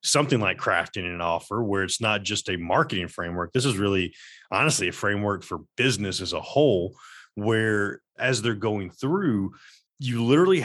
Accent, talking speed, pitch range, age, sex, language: American, 170 wpm, 100-145 Hz, 30-49, male, English